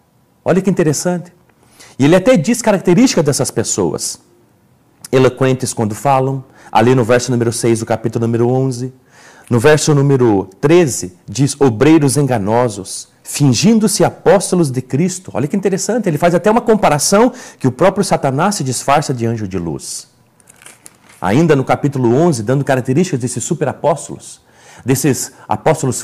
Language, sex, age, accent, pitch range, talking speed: Portuguese, male, 40-59, Brazilian, 120-165 Hz, 140 wpm